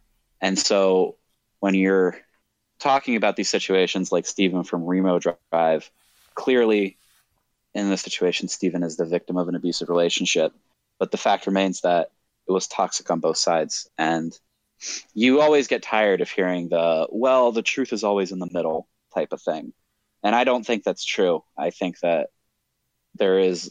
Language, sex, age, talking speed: English, male, 20-39, 165 wpm